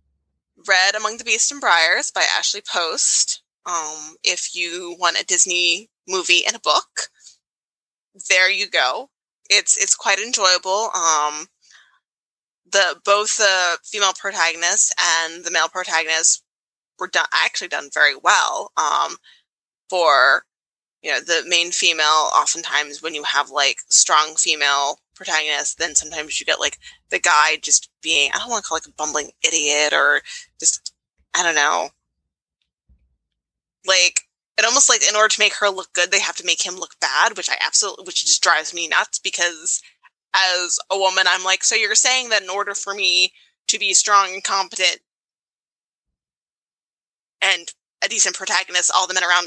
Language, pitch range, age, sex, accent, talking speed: English, 160-200 Hz, 20-39, female, American, 160 wpm